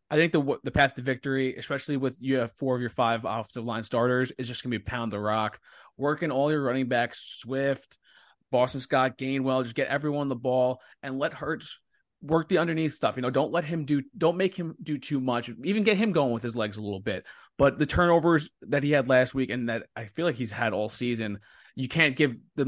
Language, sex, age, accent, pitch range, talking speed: English, male, 20-39, American, 115-135 Hz, 240 wpm